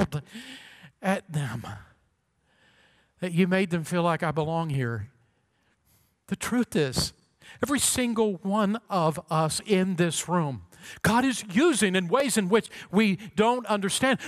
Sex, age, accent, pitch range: male, 50-69, American, 185-240 Hz